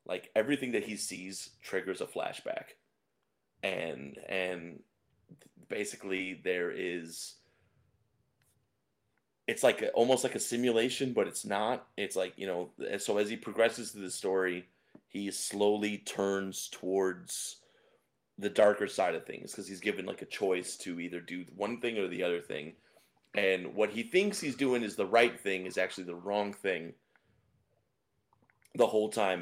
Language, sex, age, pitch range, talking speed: English, male, 30-49, 95-115 Hz, 155 wpm